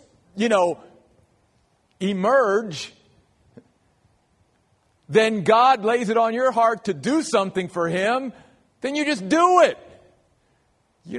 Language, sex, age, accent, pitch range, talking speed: English, male, 50-69, American, 140-230 Hz, 115 wpm